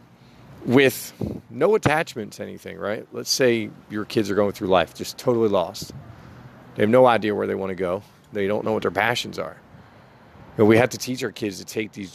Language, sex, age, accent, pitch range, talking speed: English, male, 40-59, American, 100-115 Hz, 210 wpm